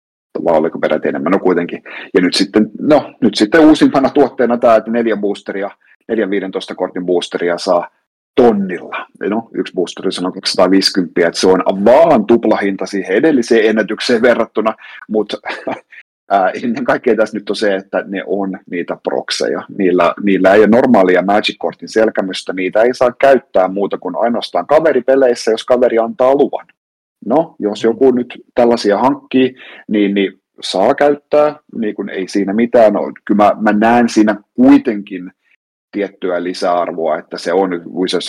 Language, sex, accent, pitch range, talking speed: Finnish, male, native, 95-120 Hz, 150 wpm